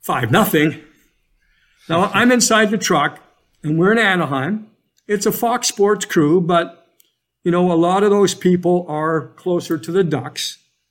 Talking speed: 160 wpm